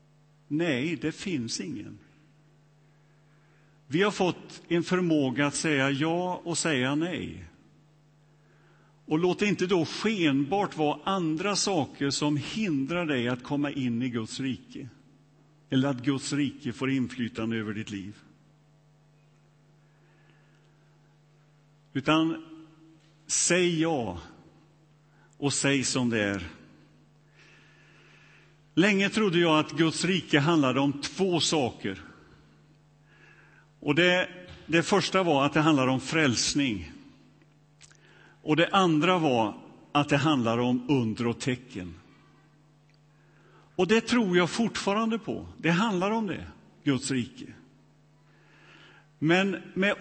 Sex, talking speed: male, 115 wpm